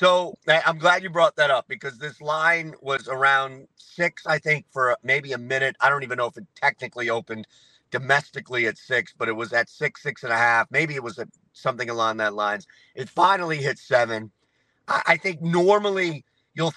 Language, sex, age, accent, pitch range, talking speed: English, male, 40-59, American, 125-165 Hz, 195 wpm